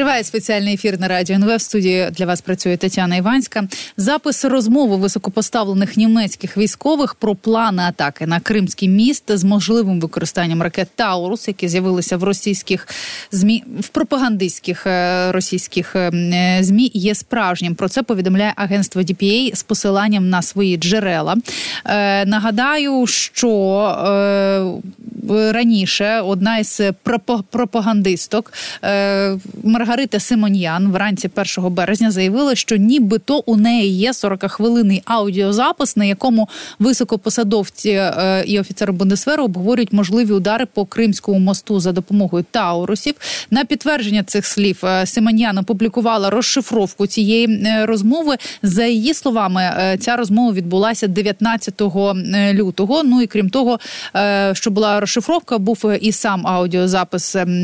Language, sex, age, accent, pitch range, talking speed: Ukrainian, female, 20-39, native, 190-230 Hz, 115 wpm